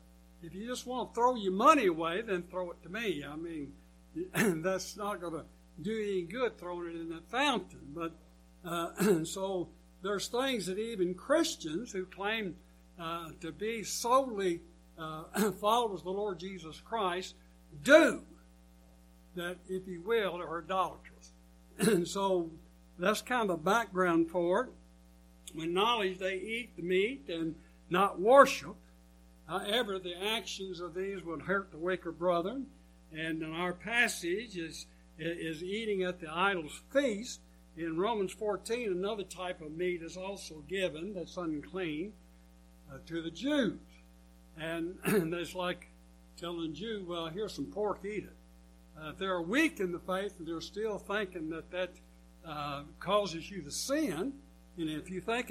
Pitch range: 150-200 Hz